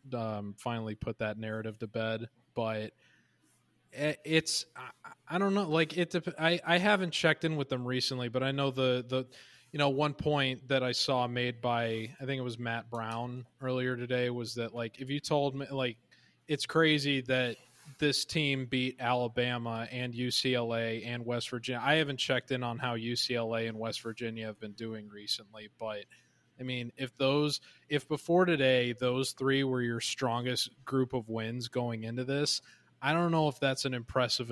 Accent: American